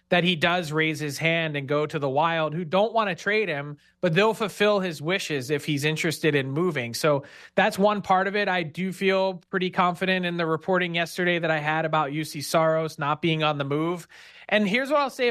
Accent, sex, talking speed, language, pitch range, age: American, male, 225 wpm, English, 155-185 Hz, 30-49